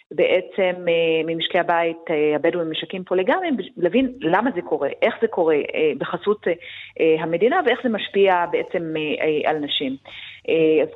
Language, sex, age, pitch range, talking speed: Hebrew, female, 30-49, 165-240 Hz, 120 wpm